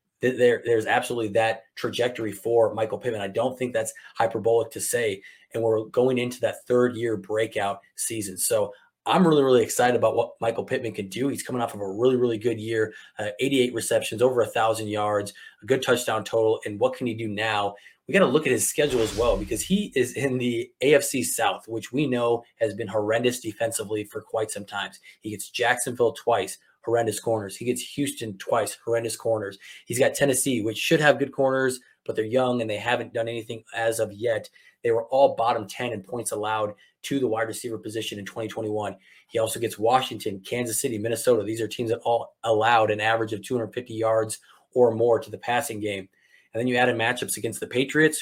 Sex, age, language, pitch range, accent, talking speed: male, 20-39, English, 110-130 Hz, American, 205 wpm